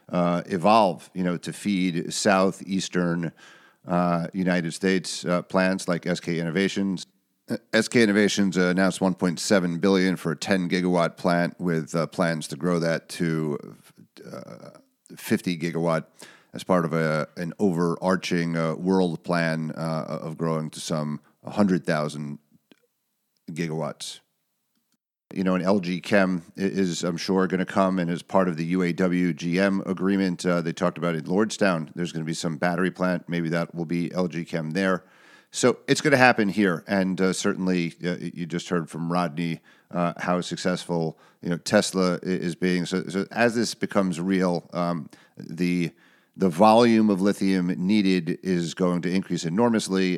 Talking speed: 155 wpm